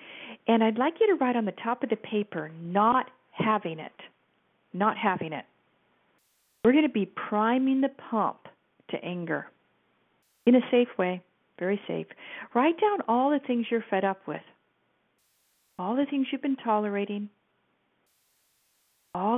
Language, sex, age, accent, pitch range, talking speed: English, female, 40-59, American, 180-235 Hz, 150 wpm